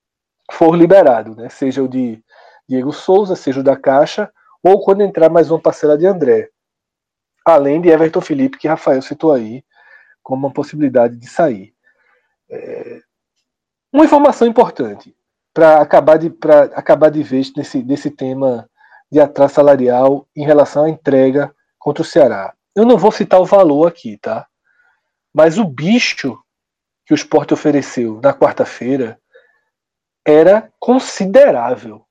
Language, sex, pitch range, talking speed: Portuguese, male, 145-215 Hz, 140 wpm